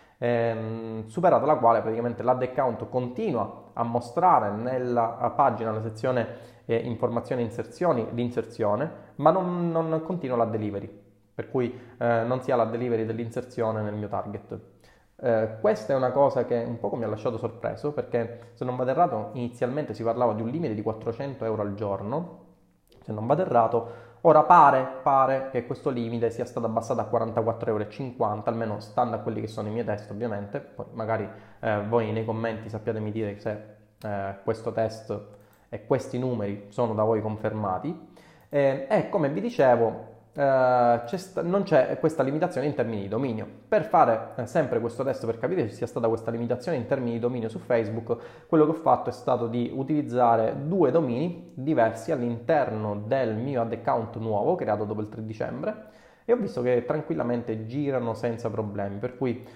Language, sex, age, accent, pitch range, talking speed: Italian, male, 20-39, native, 110-130 Hz, 175 wpm